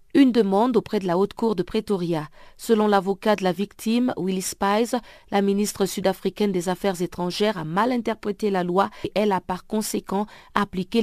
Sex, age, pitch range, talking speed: female, 50-69, 180-220 Hz, 180 wpm